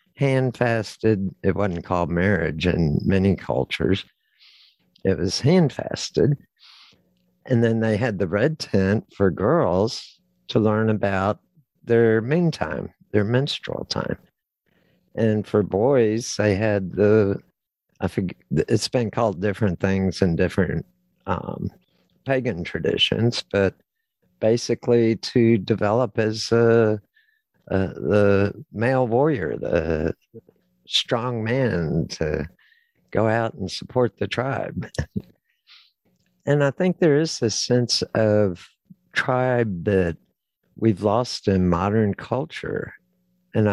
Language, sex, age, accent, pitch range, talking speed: English, male, 50-69, American, 95-120 Hz, 115 wpm